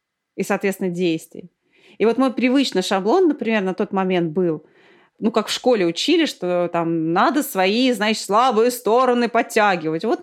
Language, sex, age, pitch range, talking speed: Russian, female, 30-49, 185-255 Hz, 160 wpm